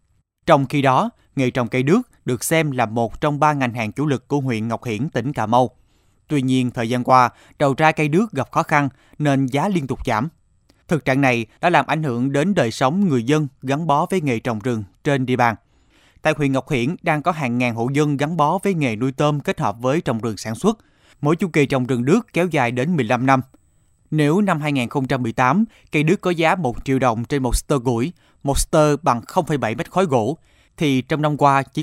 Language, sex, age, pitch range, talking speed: Vietnamese, male, 20-39, 125-155 Hz, 230 wpm